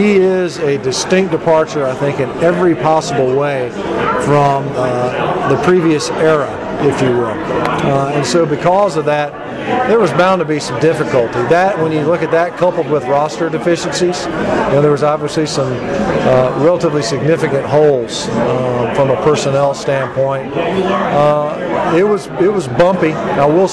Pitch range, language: 140-170 Hz, English